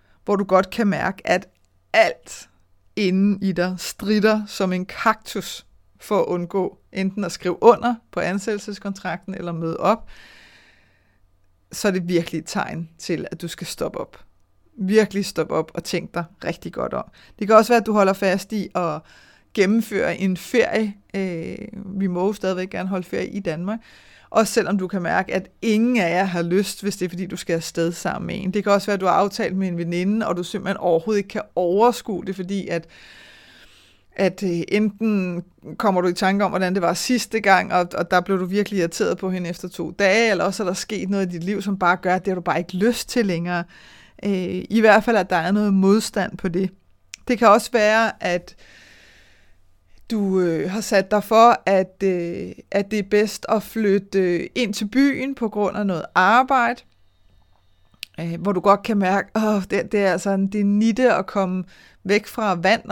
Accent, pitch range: native, 175-210 Hz